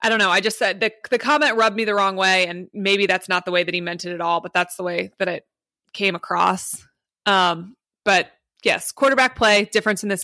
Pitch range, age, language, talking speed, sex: 180-215 Hz, 20-39, English, 245 wpm, female